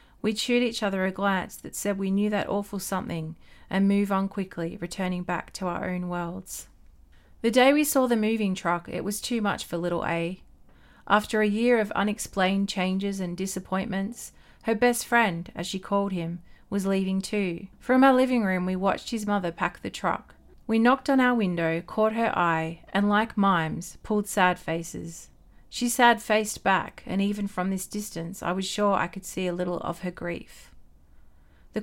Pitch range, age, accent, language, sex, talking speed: 175-220 Hz, 40-59, Australian, English, female, 190 wpm